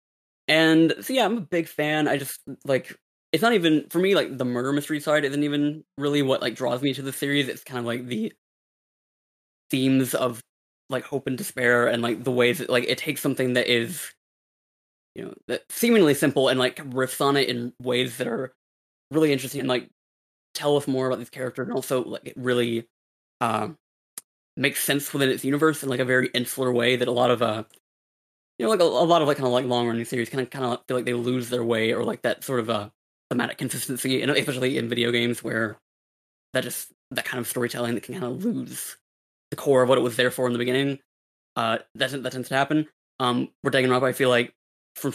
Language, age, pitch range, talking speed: English, 20-39, 120-140 Hz, 230 wpm